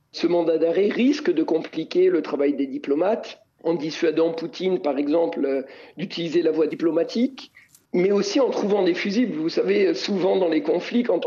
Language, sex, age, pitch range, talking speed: French, male, 50-69, 160-250 Hz, 170 wpm